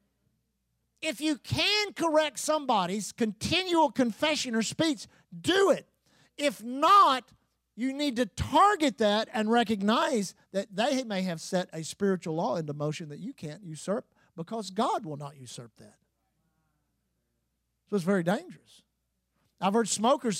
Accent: American